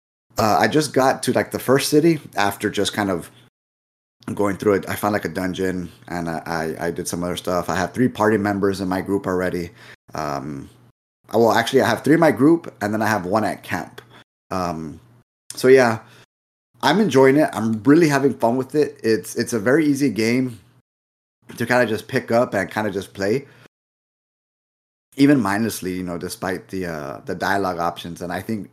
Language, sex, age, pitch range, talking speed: English, male, 30-49, 90-115 Hz, 205 wpm